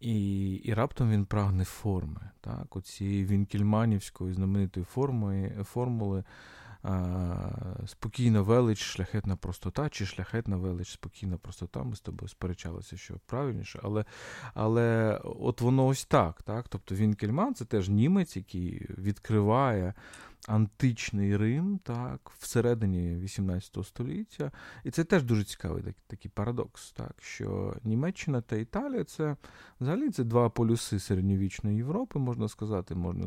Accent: native